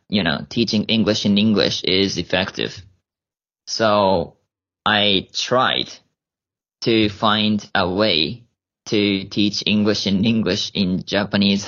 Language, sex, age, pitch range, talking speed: English, male, 20-39, 95-115 Hz, 115 wpm